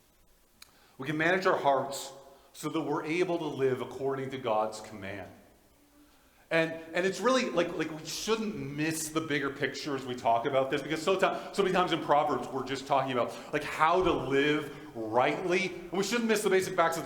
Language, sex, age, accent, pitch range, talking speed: English, male, 40-59, American, 140-190 Hz, 195 wpm